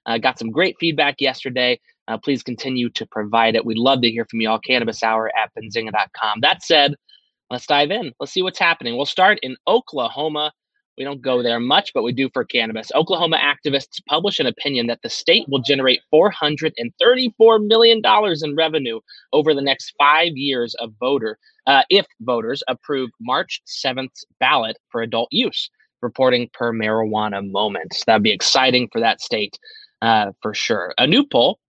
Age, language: 20-39, English